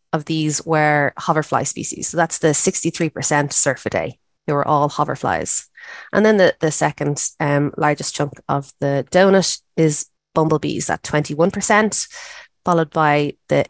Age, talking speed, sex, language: 20-39, 140 wpm, female, English